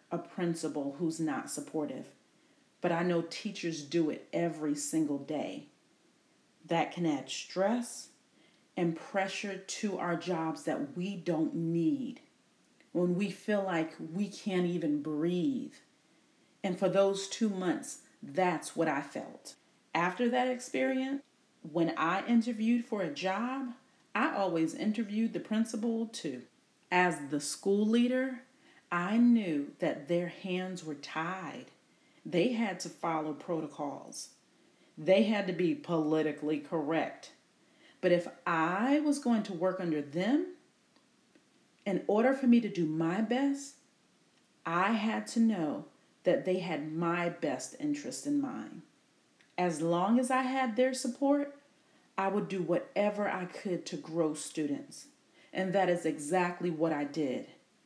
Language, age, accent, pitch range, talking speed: English, 40-59, American, 165-240 Hz, 140 wpm